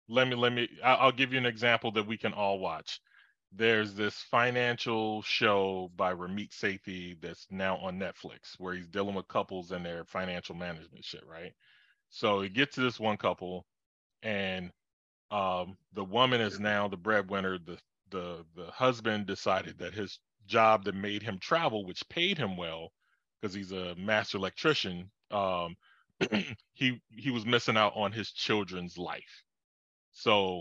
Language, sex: English, male